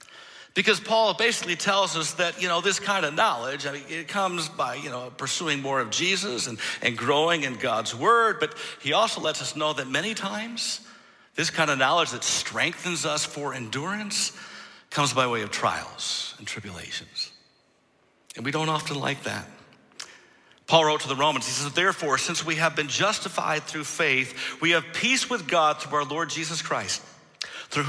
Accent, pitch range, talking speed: American, 145-195 Hz, 185 wpm